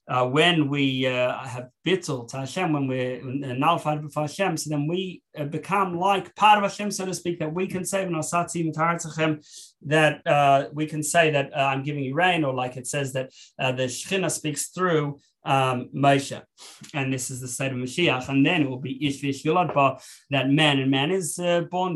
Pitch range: 135-155 Hz